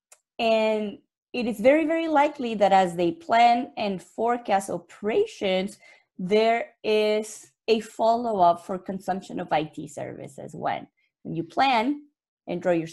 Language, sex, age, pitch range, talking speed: English, female, 20-39, 185-235 Hz, 130 wpm